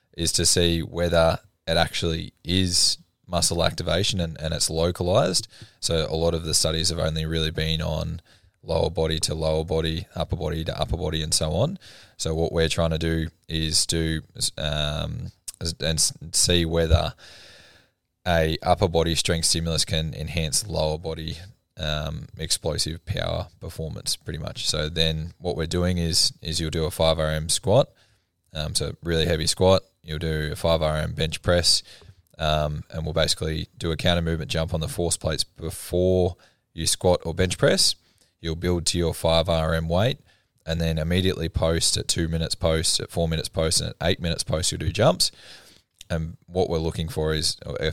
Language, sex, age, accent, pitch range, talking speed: English, male, 20-39, Australian, 80-90 Hz, 170 wpm